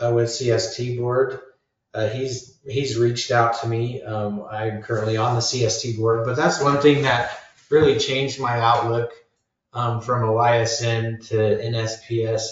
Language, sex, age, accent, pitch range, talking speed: English, male, 30-49, American, 105-120 Hz, 155 wpm